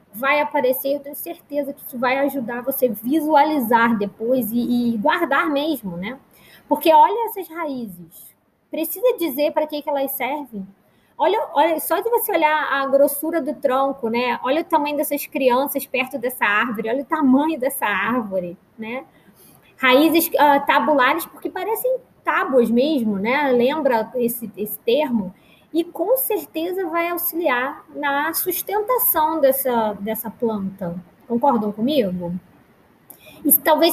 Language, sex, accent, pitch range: Portuguese, female, Brazilian, 230-310 Hz